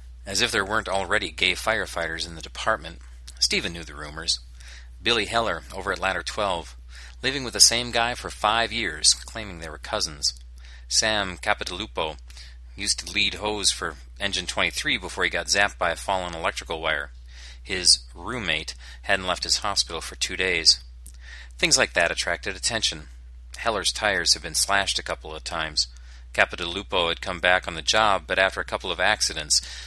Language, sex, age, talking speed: English, male, 40-59, 175 wpm